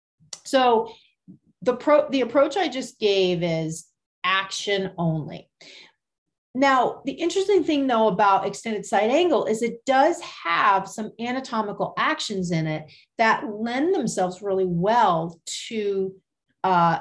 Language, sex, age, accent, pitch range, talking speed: English, female, 40-59, American, 180-235 Hz, 125 wpm